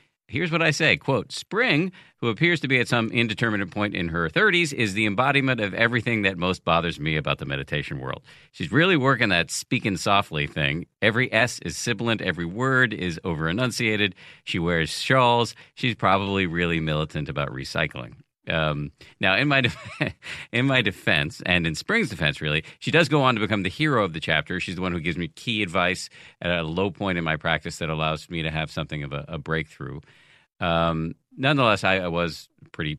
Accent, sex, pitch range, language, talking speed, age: American, male, 80-105 Hz, English, 200 wpm, 50-69